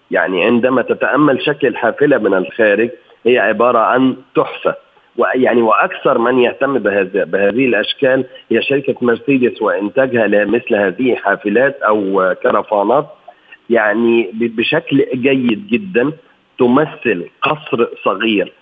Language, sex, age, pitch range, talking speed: Arabic, male, 40-59, 110-140 Hz, 110 wpm